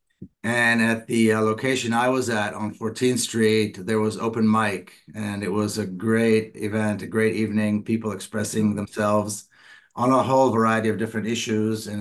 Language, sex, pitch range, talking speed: English, male, 105-115 Hz, 175 wpm